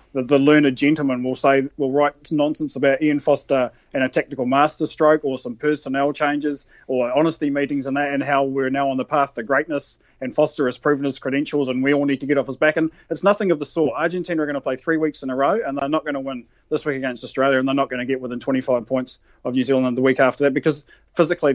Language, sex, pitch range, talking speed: English, male, 135-155 Hz, 260 wpm